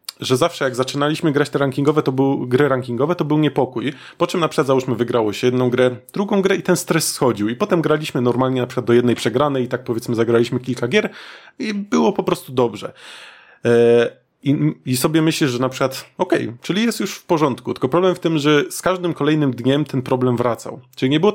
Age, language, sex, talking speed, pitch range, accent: 20-39, Polish, male, 220 wpm, 120-150 Hz, native